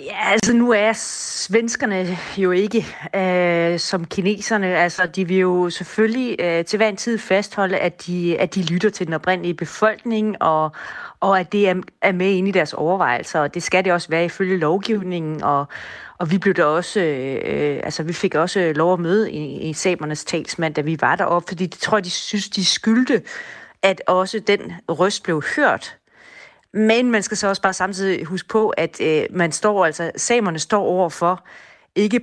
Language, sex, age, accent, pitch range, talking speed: Danish, female, 30-49, native, 165-200 Hz, 190 wpm